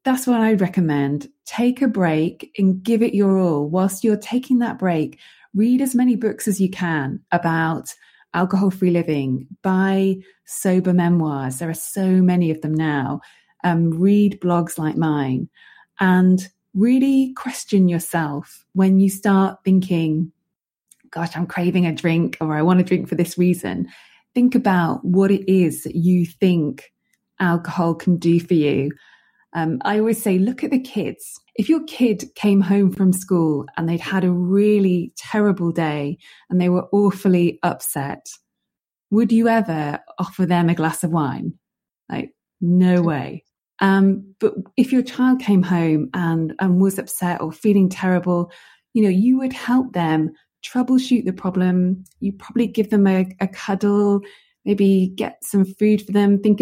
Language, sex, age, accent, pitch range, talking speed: English, female, 20-39, British, 170-205 Hz, 160 wpm